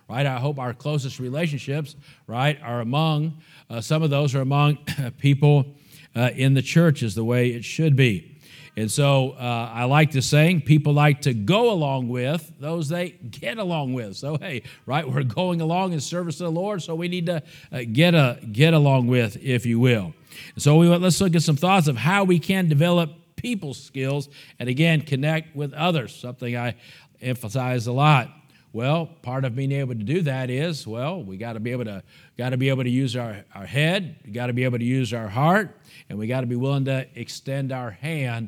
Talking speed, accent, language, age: 205 wpm, American, English, 50-69